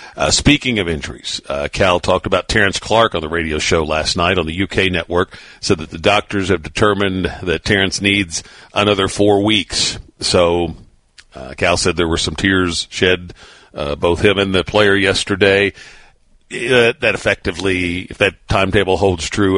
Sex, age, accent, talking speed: male, 50-69, American, 170 wpm